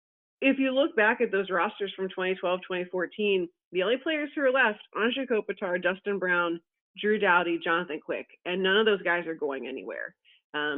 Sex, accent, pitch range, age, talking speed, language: female, American, 170-215 Hz, 30-49, 180 wpm, English